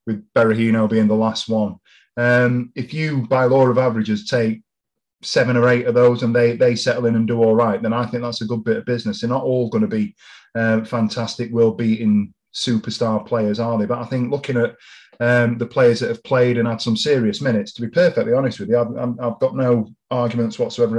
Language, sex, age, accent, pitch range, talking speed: English, male, 30-49, British, 110-120 Hz, 225 wpm